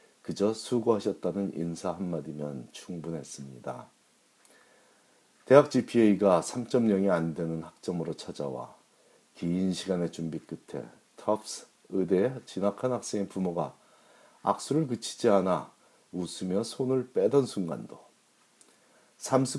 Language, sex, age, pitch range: Korean, male, 40-59, 90-120 Hz